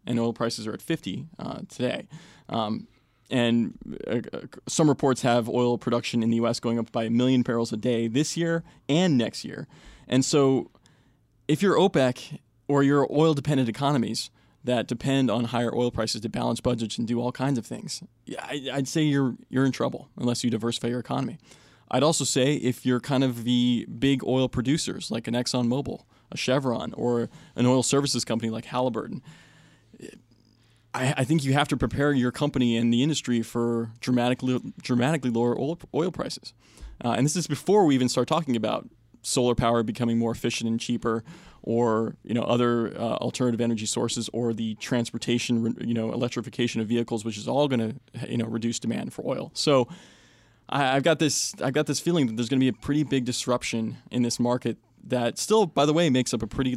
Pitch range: 115-135 Hz